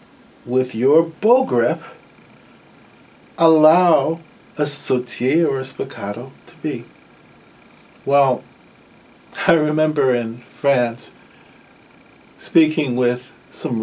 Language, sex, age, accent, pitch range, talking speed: English, male, 50-69, American, 130-180 Hz, 85 wpm